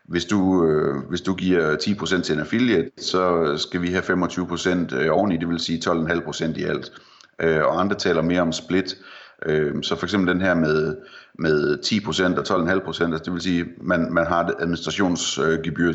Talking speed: 175 wpm